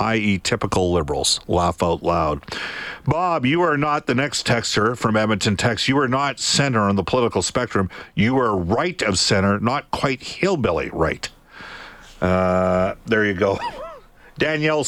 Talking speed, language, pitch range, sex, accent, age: 155 wpm, English, 95-130 Hz, male, American, 50-69